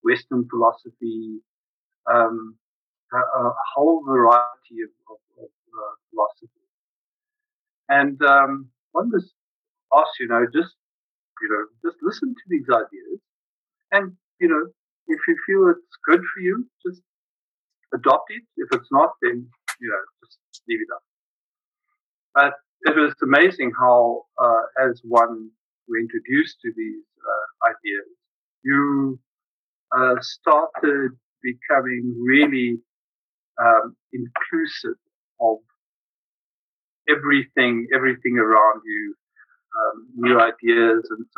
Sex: male